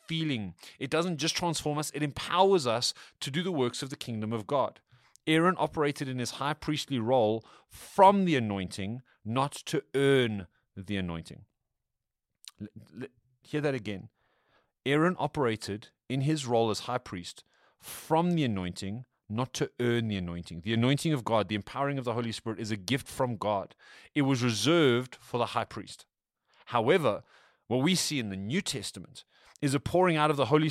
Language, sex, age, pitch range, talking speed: English, male, 30-49, 115-150 Hz, 175 wpm